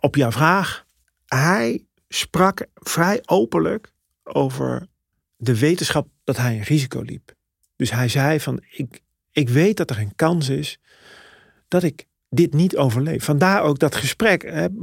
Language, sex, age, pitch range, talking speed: Dutch, male, 40-59, 125-165 Hz, 145 wpm